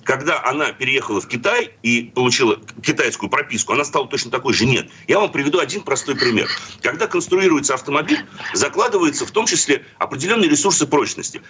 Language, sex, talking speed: Russian, male, 160 wpm